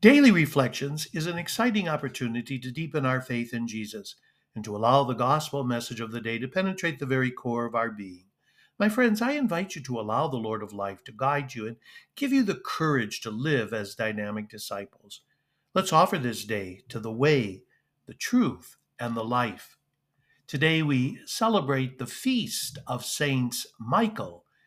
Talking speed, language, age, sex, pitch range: 180 wpm, English, 60-79, male, 120-150 Hz